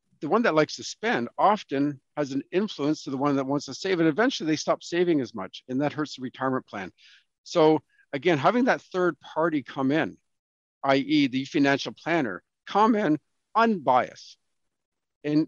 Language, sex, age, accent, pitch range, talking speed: English, male, 50-69, American, 130-170 Hz, 180 wpm